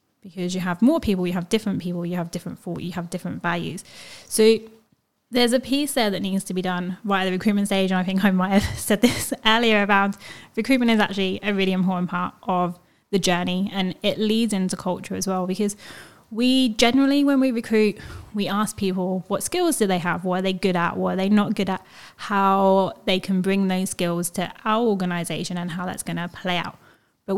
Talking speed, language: 220 wpm, English